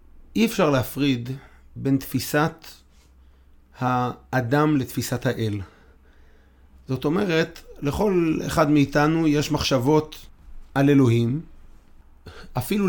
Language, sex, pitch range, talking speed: Hebrew, male, 125-160 Hz, 85 wpm